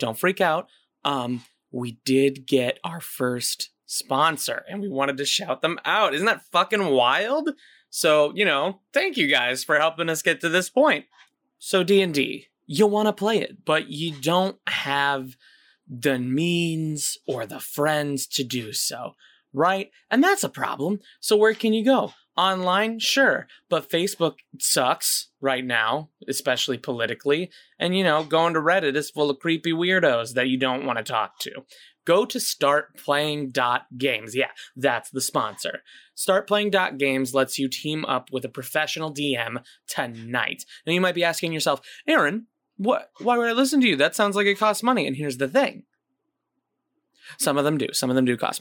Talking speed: 175 wpm